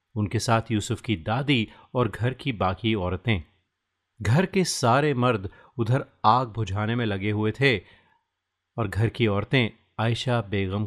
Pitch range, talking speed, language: 105-130 Hz, 150 wpm, Hindi